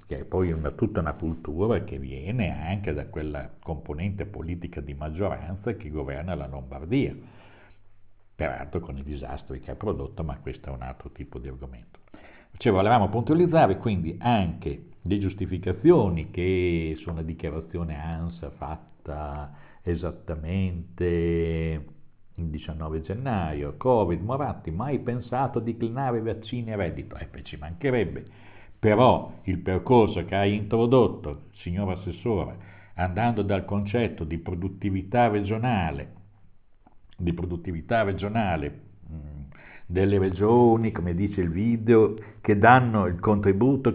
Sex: male